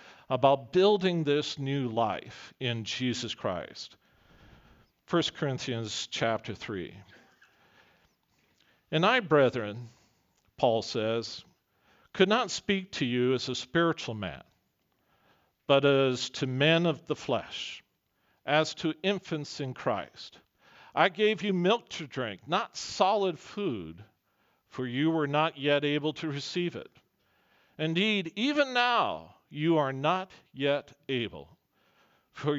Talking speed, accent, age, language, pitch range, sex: 120 wpm, American, 50-69, English, 130-185 Hz, male